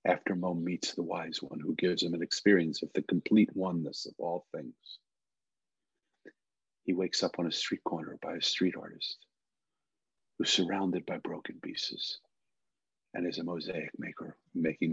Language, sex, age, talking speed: English, male, 50-69, 160 wpm